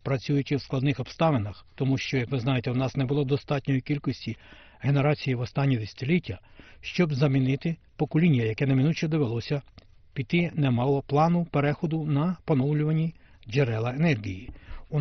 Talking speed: 135 wpm